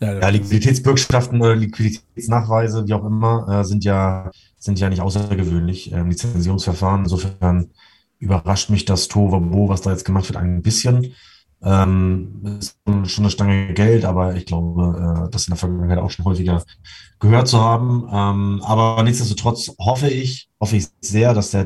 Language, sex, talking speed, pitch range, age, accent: German, male, 165 wpm, 90-105 Hz, 30-49, German